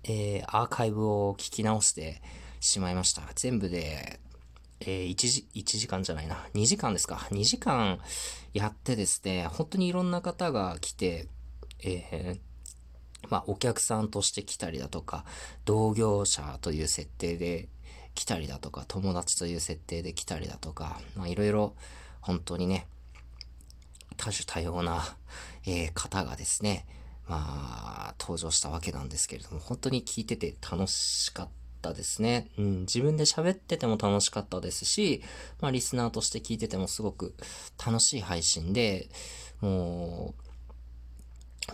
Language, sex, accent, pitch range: Japanese, male, native, 75-110 Hz